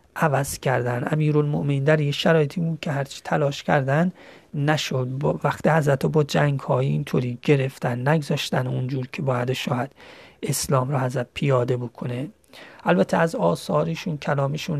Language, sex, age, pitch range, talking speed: Persian, male, 30-49, 130-150 Hz, 135 wpm